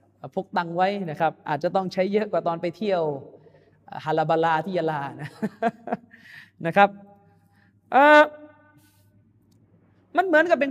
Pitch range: 175-275 Hz